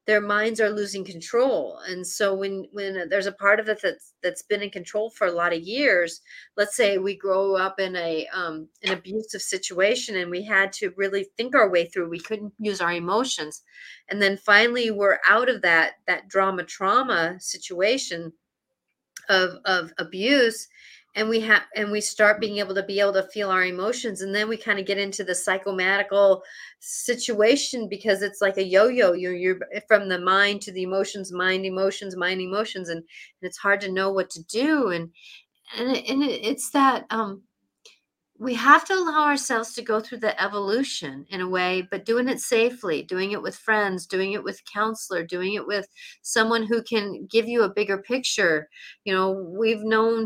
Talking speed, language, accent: 190 wpm, English, American